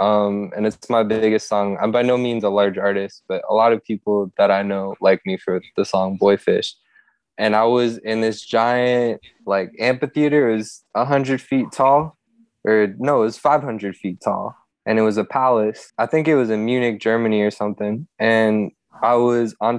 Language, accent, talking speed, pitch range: English, American, 205 wpm, 105-125 Hz